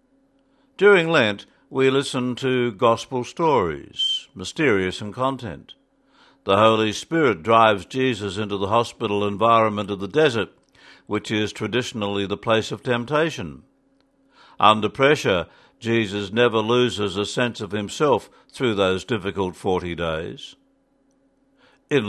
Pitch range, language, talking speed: 105-145 Hz, English, 120 wpm